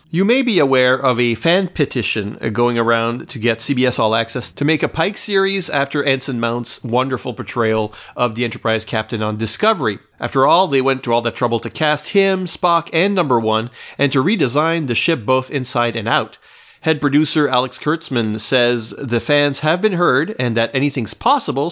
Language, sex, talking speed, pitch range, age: English, male, 190 wpm, 120-160 Hz, 40-59